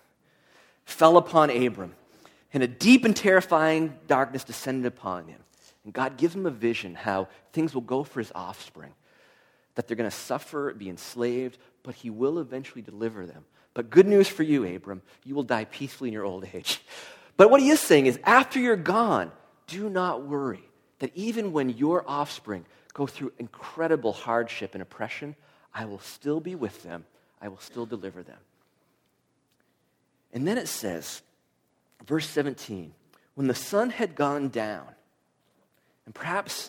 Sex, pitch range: male, 110-160 Hz